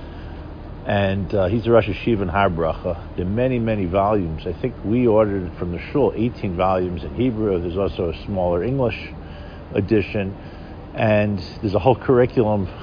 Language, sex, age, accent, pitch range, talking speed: English, male, 50-69, American, 90-115 Hz, 170 wpm